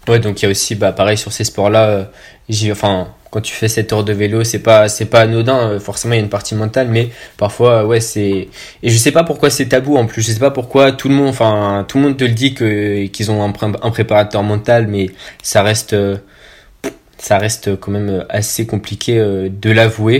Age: 20-39